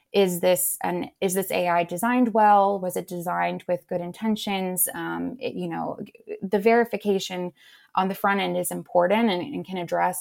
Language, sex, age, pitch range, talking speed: English, female, 20-39, 170-195 Hz, 175 wpm